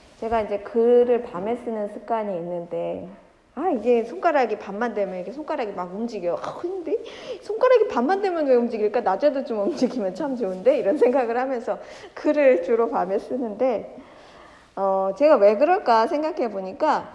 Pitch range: 205-295 Hz